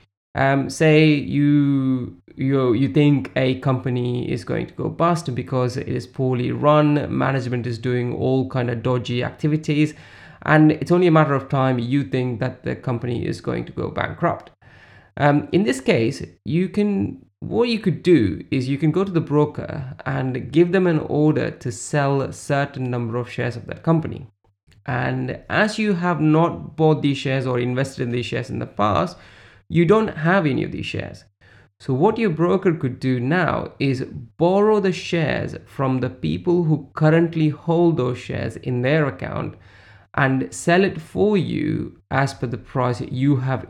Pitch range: 125-160 Hz